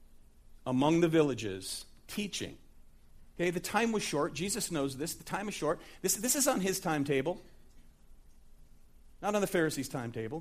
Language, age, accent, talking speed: English, 40-59, American, 155 wpm